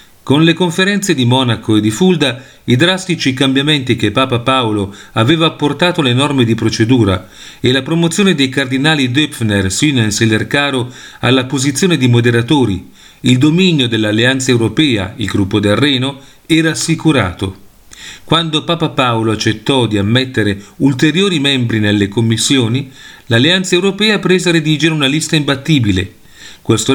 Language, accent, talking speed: Italian, native, 140 wpm